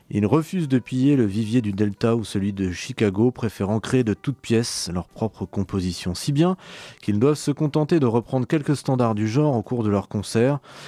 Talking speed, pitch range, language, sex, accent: 205 wpm, 105-135 Hz, French, male, French